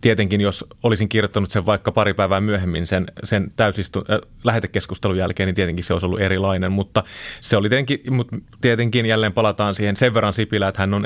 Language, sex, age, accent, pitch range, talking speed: Finnish, male, 30-49, native, 95-110 Hz, 195 wpm